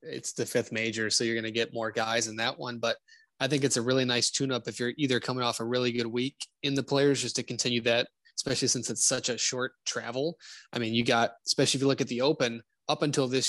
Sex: male